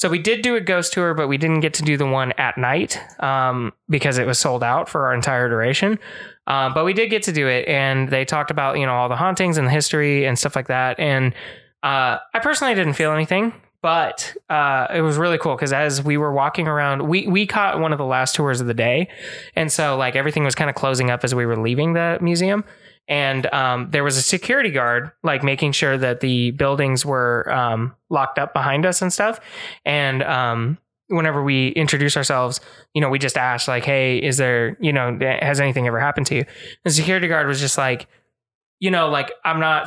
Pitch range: 130-160 Hz